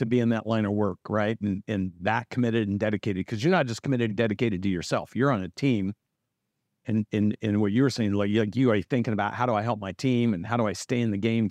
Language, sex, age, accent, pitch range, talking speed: English, male, 50-69, American, 110-140 Hz, 290 wpm